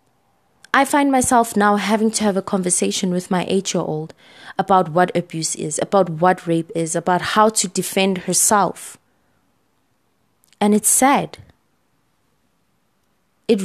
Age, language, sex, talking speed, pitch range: 20-39, English, female, 125 wpm, 175-215 Hz